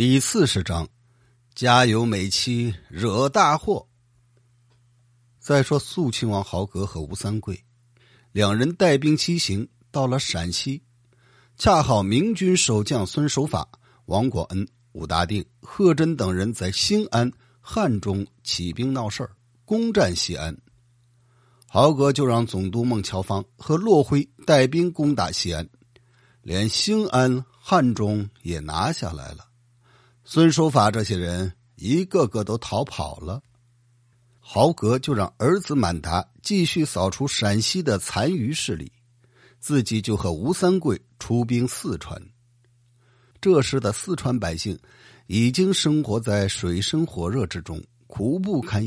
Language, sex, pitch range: Chinese, male, 100-135 Hz